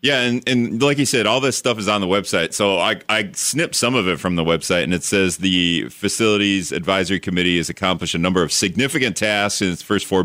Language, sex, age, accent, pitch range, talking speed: English, male, 30-49, American, 90-105 Hz, 240 wpm